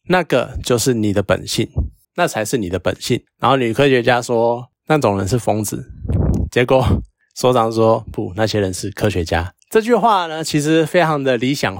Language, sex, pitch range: Chinese, male, 105-140 Hz